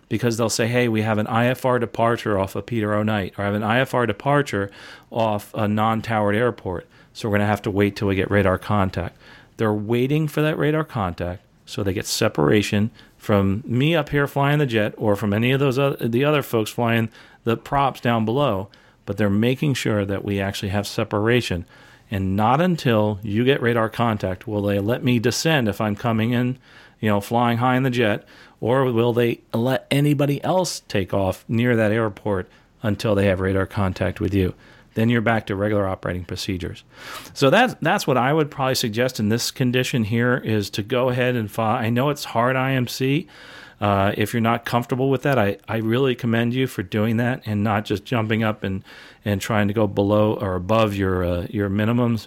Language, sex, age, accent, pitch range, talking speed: English, male, 40-59, American, 100-125 Hz, 210 wpm